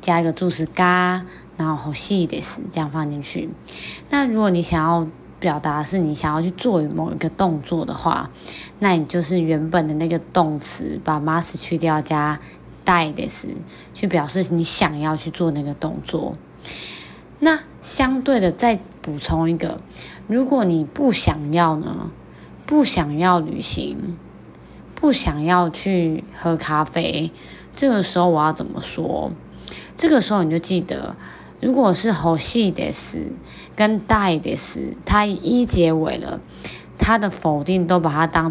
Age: 20-39